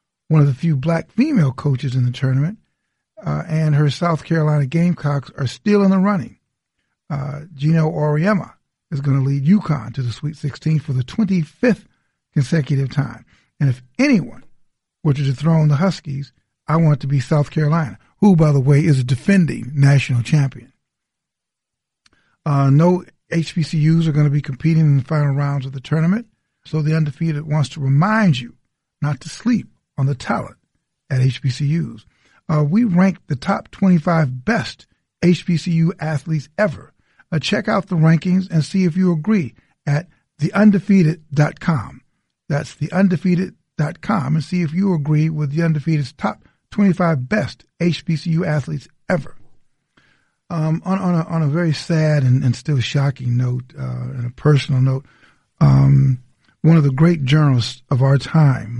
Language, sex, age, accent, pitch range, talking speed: English, male, 50-69, American, 140-170 Hz, 160 wpm